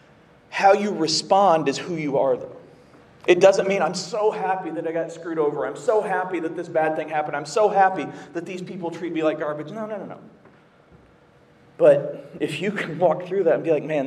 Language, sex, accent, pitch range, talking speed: English, male, American, 150-185 Hz, 220 wpm